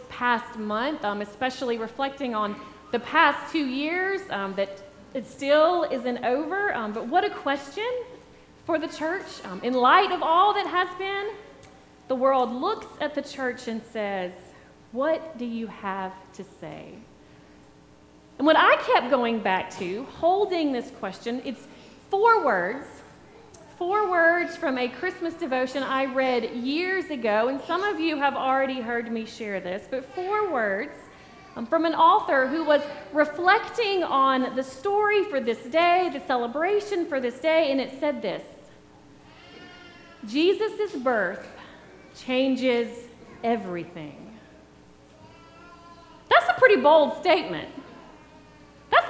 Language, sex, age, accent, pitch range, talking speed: English, female, 30-49, American, 235-335 Hz, 140 wpm